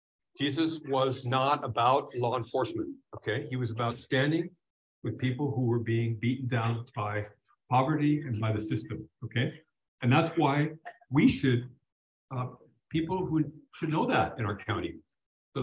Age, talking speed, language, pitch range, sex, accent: 50-69, 155 wpm, English, 115-135 Hz, male, American